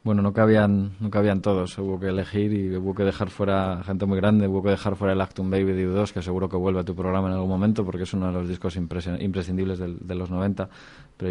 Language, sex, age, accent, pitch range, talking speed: Spanish, male, 20-39, Spanish, 90-100 Hz, 265 wpm